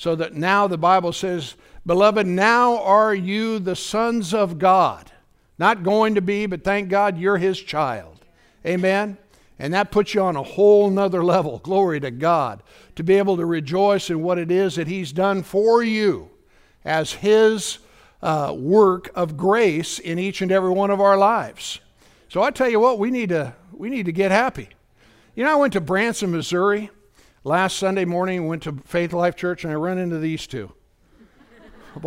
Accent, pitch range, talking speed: American, 160-205 Hz, 190 wpm